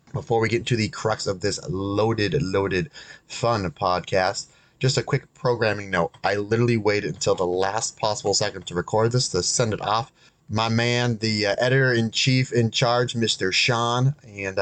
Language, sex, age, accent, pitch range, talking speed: English, male, 30-49, American, 100-125 Hz, 170 wpm